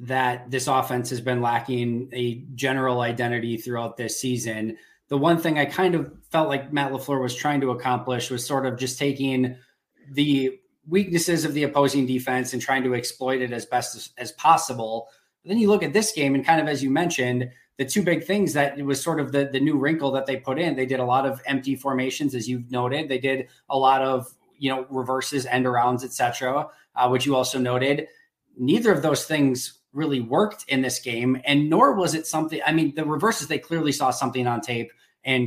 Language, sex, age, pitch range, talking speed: English, male, 20-39, 125-150 Hz, 220 wpm